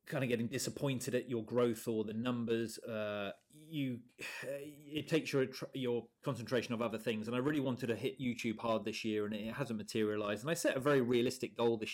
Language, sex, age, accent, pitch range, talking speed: English, male, 30-49, British, 110-130 Hz, 210 wpm